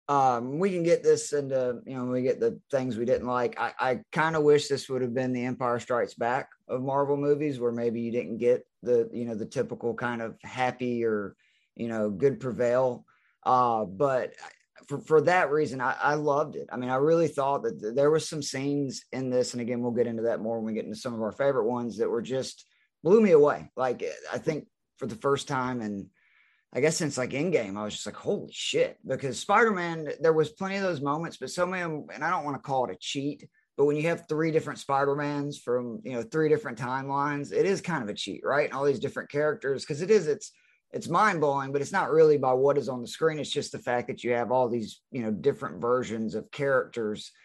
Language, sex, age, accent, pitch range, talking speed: English, male, 20-39, American, 125-160 Hz, 245 wpm